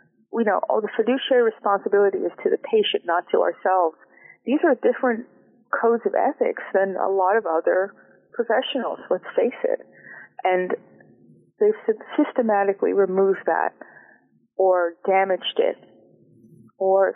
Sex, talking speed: female, 130 wpm